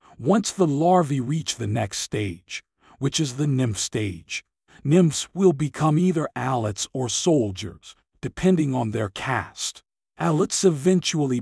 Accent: American